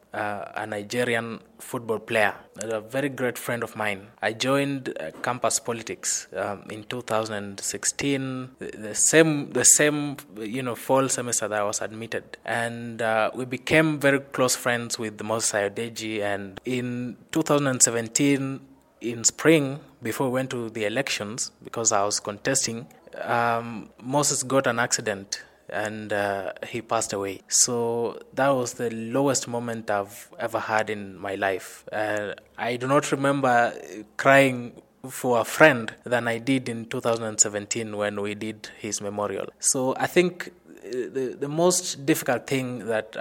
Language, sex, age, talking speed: English, male, 20-39, 150 wpm